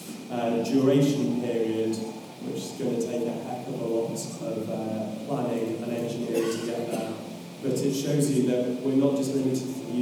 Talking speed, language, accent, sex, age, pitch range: 190 wpm, English, British, male, 30-49, 120-140 Hz